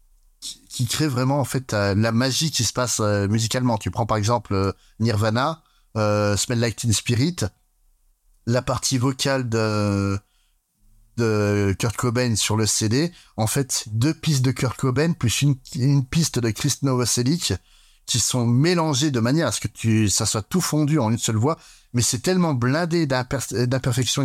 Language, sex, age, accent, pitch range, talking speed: French, male, 30-49, French, 105-130 Hz, 175 wpm